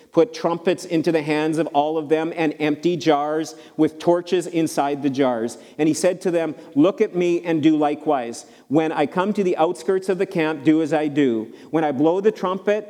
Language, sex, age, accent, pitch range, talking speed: English, male, 40-59, American, 140-175 Hz, 215 wpm